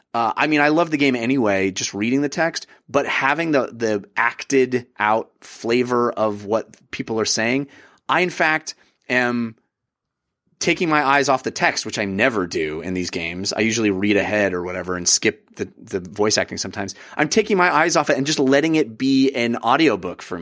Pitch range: 110-175 Hz